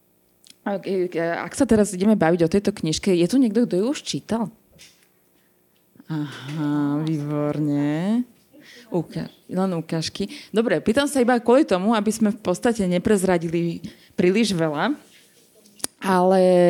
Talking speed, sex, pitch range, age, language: 120 wpm, female, 175-215 Hz, 20-39, Slovak